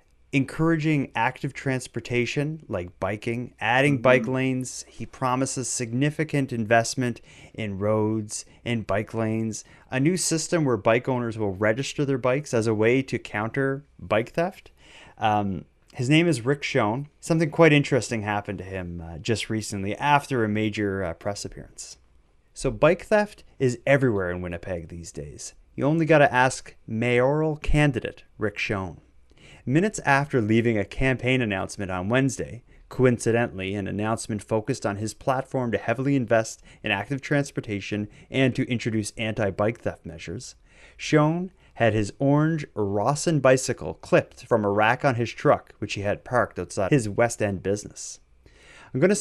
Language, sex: English, male